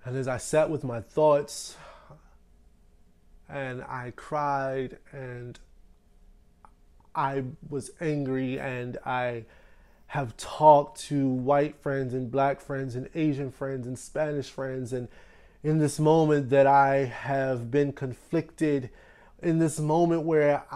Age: 20-39